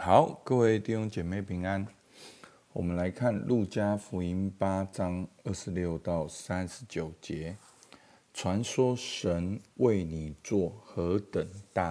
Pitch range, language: 85-110 Hz, Chinese